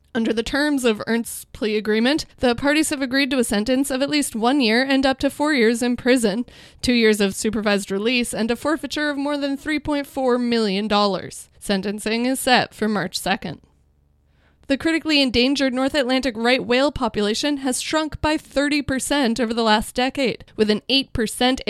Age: 20-39